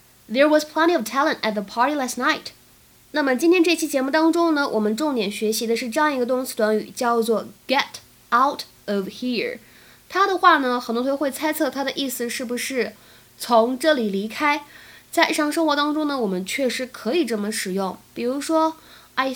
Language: Chinese